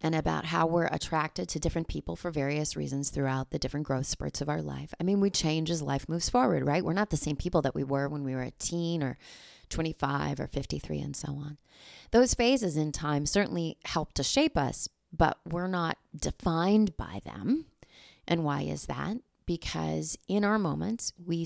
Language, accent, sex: English, American, female